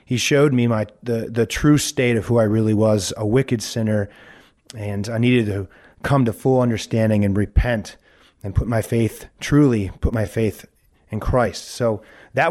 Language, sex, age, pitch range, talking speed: English, male, 30-49, 105-130 Hz, 180 wpm